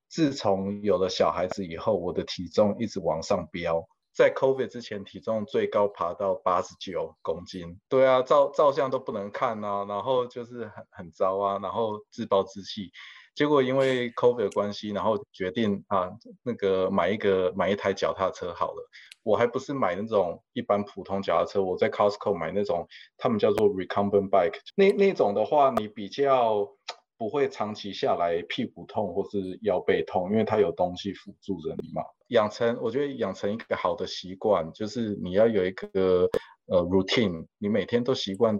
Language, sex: Chinese, male